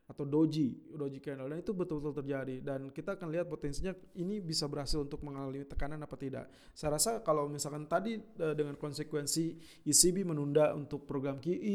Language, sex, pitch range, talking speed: Indonesian, male, 140-170 Hz, 170 wpm